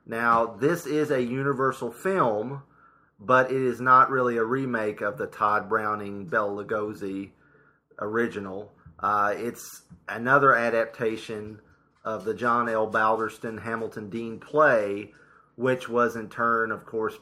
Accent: American